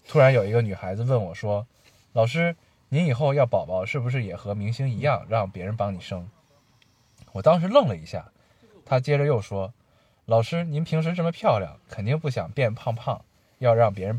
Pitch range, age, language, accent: 100-130 Hz, 20-39, Chinese, native